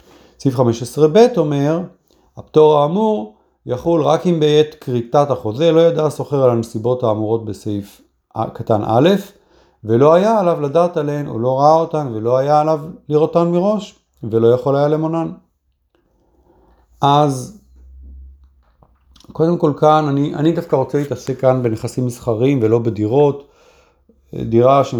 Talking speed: 125 wpm